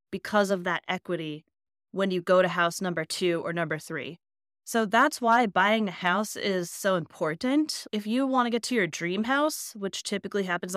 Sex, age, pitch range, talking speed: female, 20-39, 175-230 Hz, 195 wpm